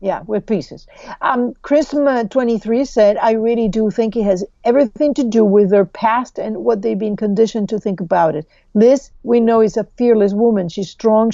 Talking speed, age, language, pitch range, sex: 195 wpm, 50-69, English, 195-230 Hz, female